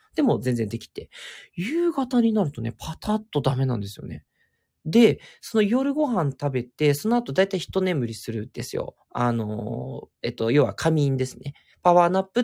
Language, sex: Japanese, male